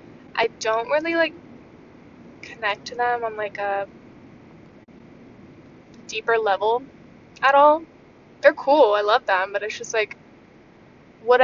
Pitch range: 210-255 Hz